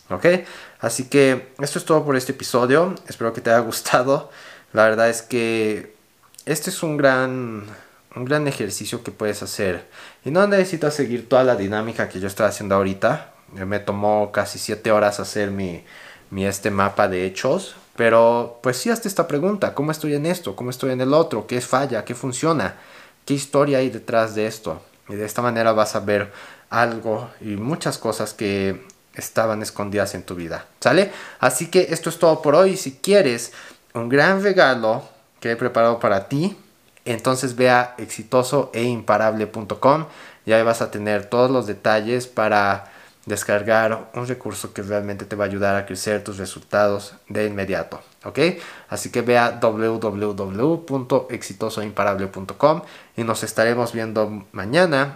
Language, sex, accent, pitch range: Spanish, male, Mexican, 105-135 Hz